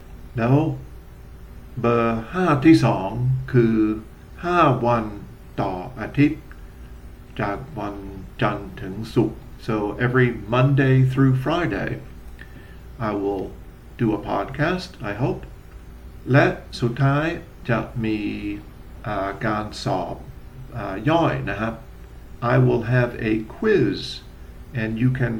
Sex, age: male, 50-69